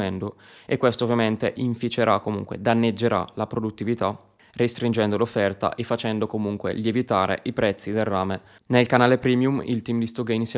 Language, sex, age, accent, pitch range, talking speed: Italian, male, 20-39, native, 105-120 Hz, 145 wpm